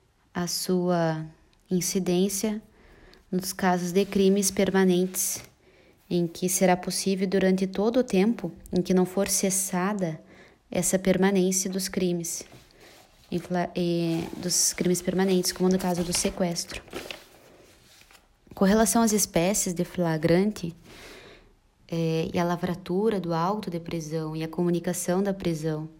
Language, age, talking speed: Portuguese, 20-39, 120 wpm